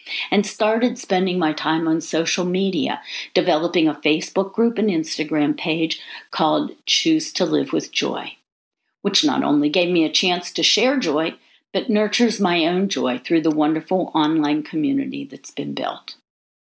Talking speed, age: 160 wpm, 60-79